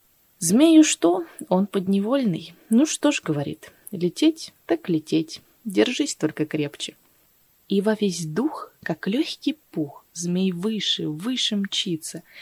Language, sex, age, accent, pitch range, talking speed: Russian, female, 20-39, native, 160-230 Hz, 120 wpm